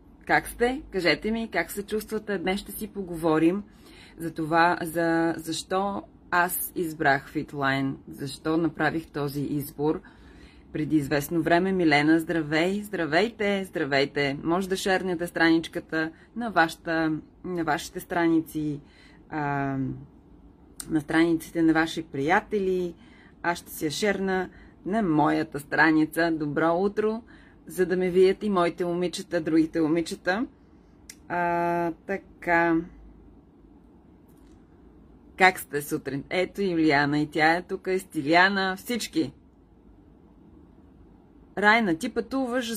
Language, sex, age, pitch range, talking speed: Bulgarian, female, 30-49, 150-185 Hz, 115 wpm